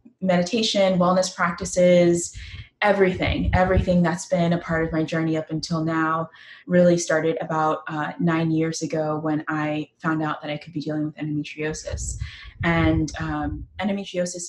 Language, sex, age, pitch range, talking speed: English, female, 20-39, 155-175 Hz, 150 wpm